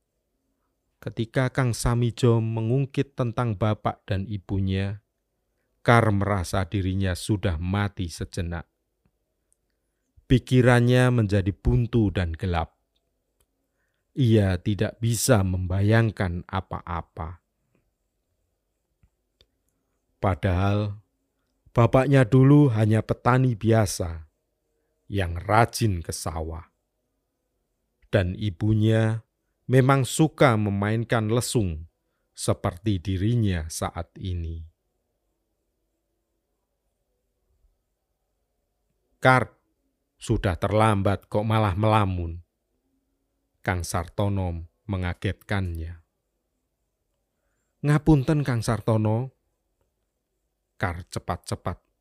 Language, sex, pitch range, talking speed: Indonesian, male, 90-115 Hz, 65 wpm